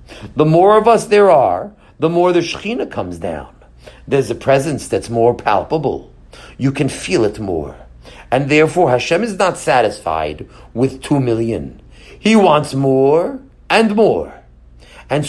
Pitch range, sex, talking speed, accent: 125-205 Hz, male, 150 wpm, American